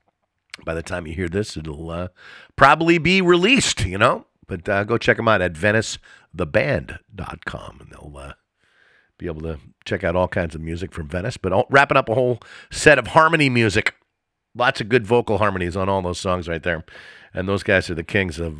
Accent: American